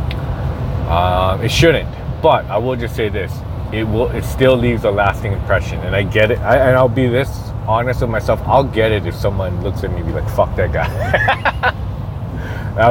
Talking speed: 195 wpm